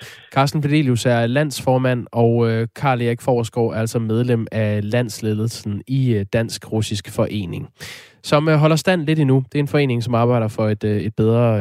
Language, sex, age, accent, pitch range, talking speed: Danish, male, 20-39, native, 115-150 Hz, 160 wpm